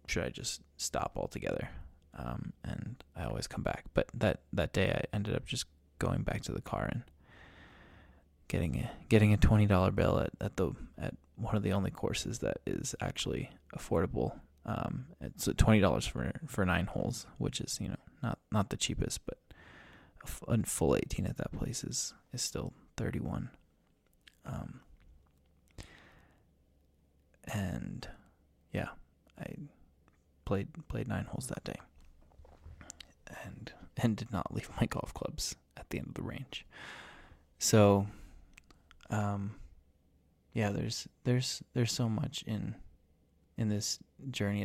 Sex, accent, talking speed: male, American, 145 wpm